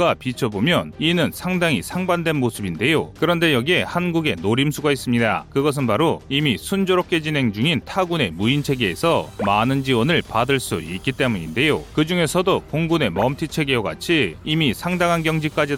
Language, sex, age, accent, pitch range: Korean, male, 30-49, native, 125-165 Hz